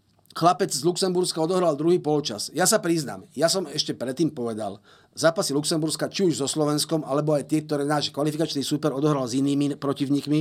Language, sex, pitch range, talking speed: Slovak, male, 140-175 Hz, 180 wpm